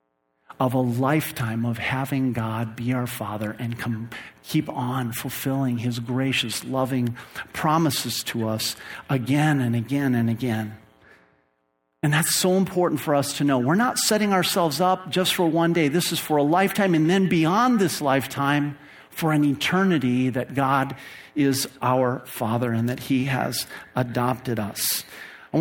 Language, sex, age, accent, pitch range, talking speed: English, male, 50-69, American, 125-160 Hz, 155 wpm